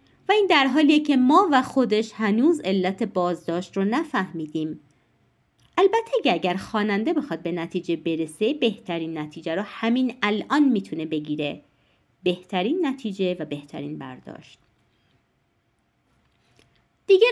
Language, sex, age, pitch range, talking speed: Persian, female, 30-49, 175-280 Hz, 115 wpm